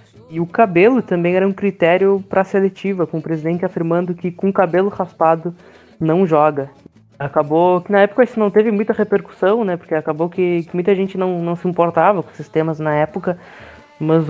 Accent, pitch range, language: Brazilian, 160-190 Hz, Portuguese